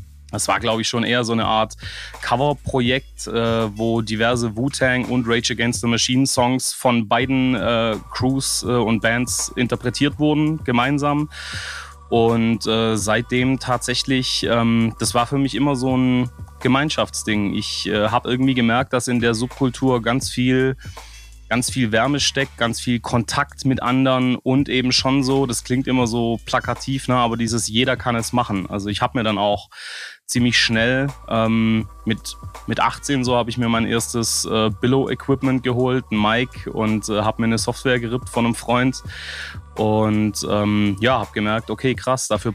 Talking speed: 165 wpm